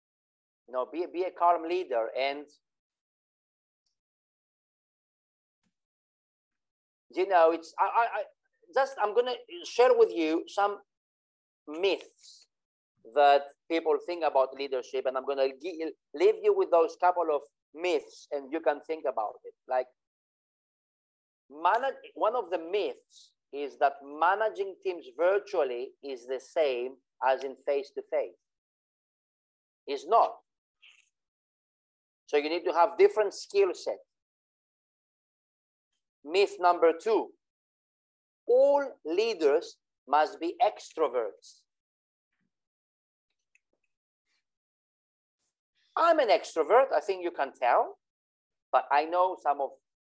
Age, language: 40-59, English